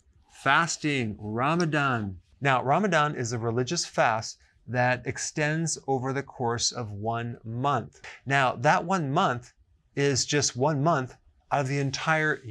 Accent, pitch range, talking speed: American, 120-160 Hz, 135 wpm